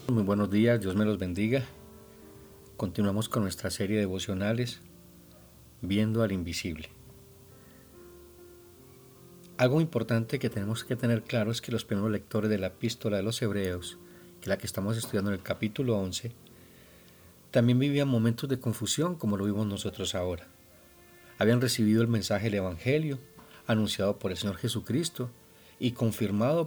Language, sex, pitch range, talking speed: Spanish, male, 95-115 Hz, 150 wpm